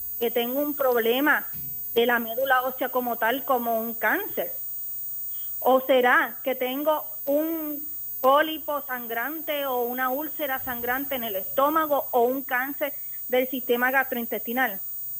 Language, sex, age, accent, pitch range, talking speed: Spanish, female, 30-49, American, 240-310 Hz, 130 wpm